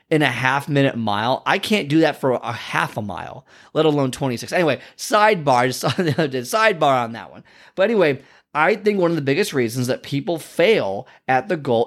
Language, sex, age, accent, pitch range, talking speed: English, male, 30-49, American, 130-175 Hz, 200 wpm